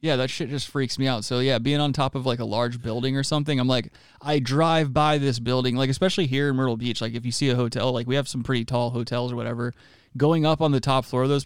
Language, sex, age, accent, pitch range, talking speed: English, male, 20-39, American, 120-140 Hz, 290 wpm